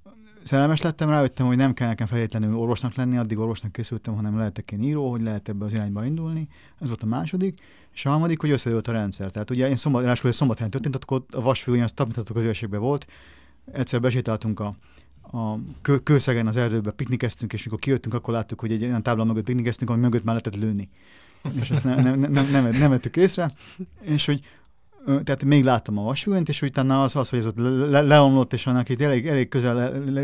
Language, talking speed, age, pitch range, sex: Hungarian, 190 wpm, 30-49, 115-140 Hz, male